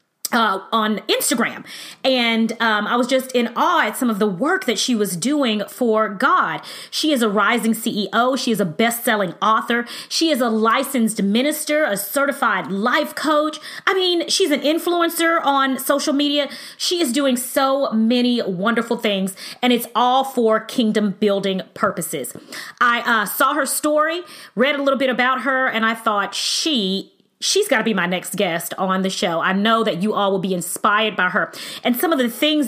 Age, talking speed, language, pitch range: 30-49, 190 wpm, English, 215-280 Hz